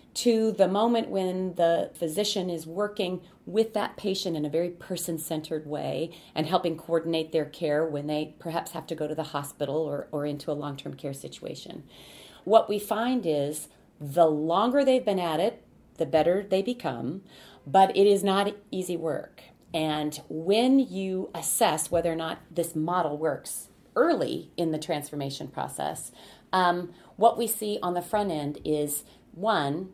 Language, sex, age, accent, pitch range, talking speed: English, female, 40-59, American, 155-205 Hz, 165 wpm